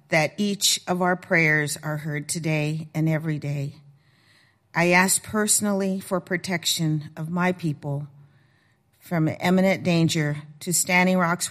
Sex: female